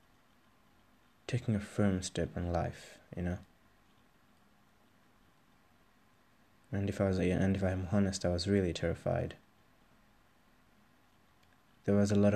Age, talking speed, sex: 20-39, 115 wpm, male